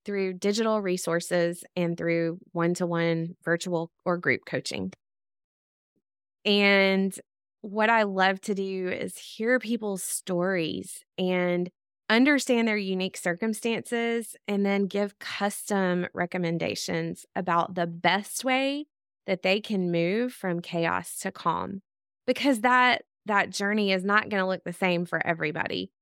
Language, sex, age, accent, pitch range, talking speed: English, female, 20-39, American, 175-215 Hz, 125 wpm